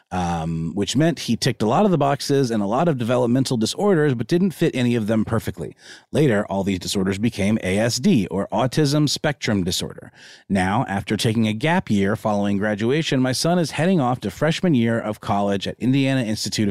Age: 30-49